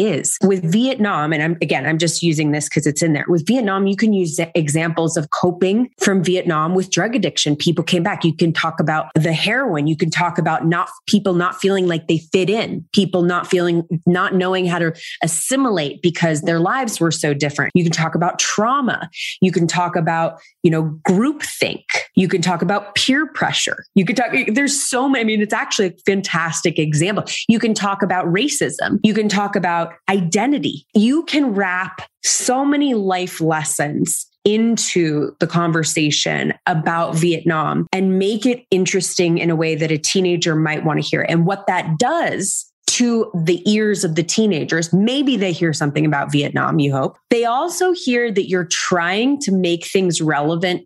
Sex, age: female, 20-39